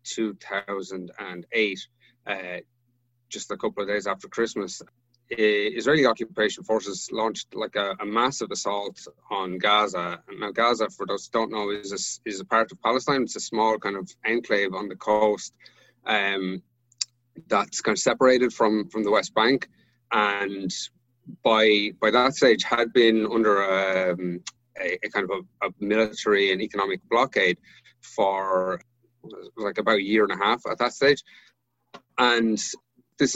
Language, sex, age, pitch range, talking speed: English, male, 30-49, 100-120 Hz, 155 wpm